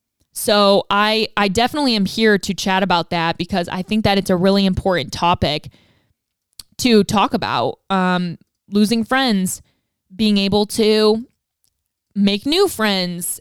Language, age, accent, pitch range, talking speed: English, 20-39, American, 185-230 Hz, 140 wpm